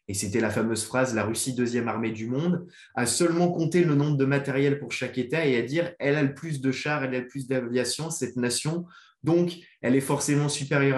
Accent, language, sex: French, French, male